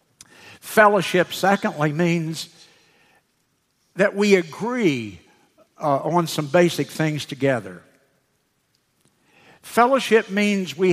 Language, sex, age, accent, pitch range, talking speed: English, male, 60-79, American, 145-185 Hz, 80 wpm